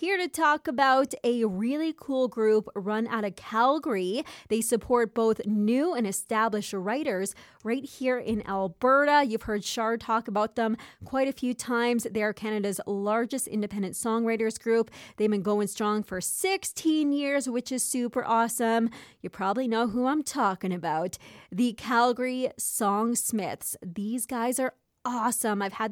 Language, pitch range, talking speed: English, 200-240 Hz, 155 wpm